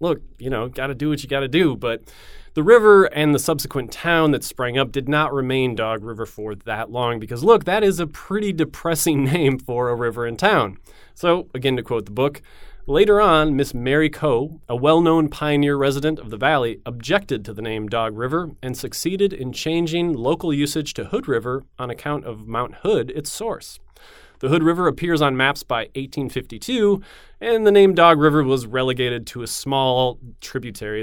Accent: American